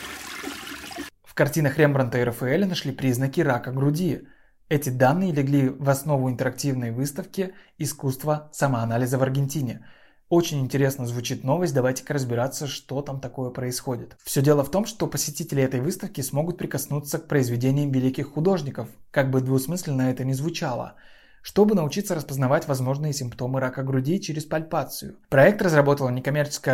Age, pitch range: 20-39, 130-160 Hz